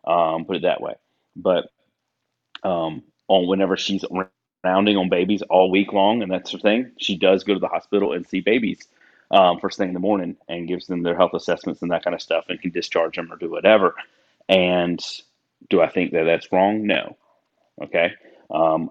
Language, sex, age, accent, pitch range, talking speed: English, male, 30-49, American, 90-100 Hz, 200 wpm